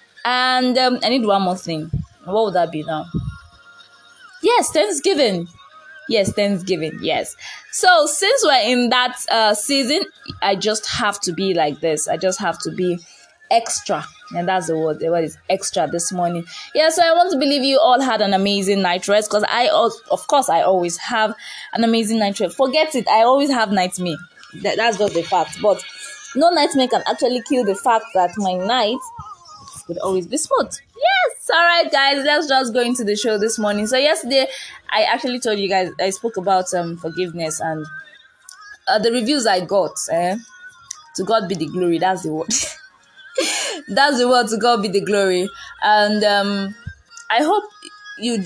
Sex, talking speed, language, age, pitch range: female, 180 wpm, English, 20-39, 185-275 Hz